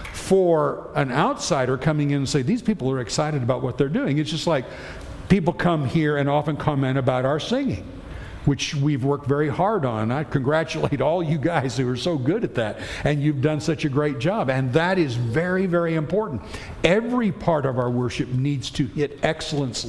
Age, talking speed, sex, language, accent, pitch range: 60-79, 200 wpm, male, English, American, 130-175 Hz